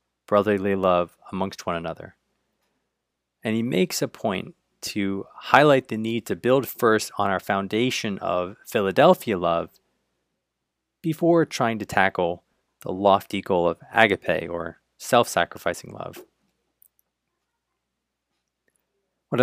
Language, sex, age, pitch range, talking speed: English, male, 20-39, 90-120 Hz, 110 wpm